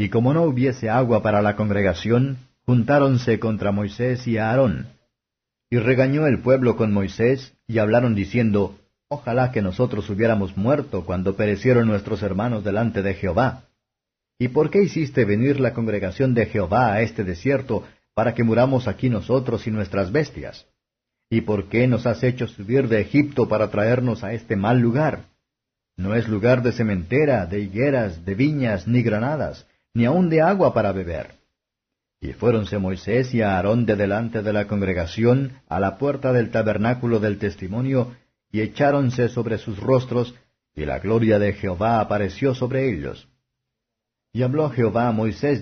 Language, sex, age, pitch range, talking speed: Spanish, male, 50-69, 105-125 Hz, 160 wpm